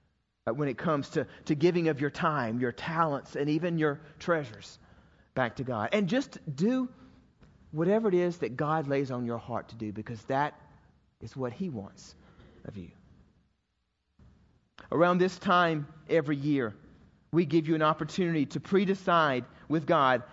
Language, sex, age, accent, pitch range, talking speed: English, male, 40-59, American, 145-185 Hz, 160 wpm